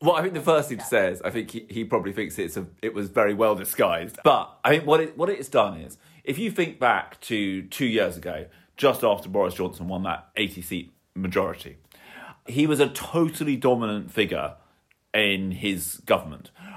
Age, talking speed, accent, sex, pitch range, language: 30-49, 195 wpm, British, male, 100-130 Hz, English